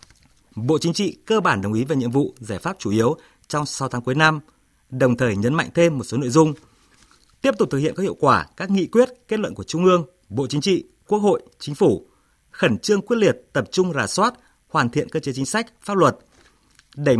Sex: male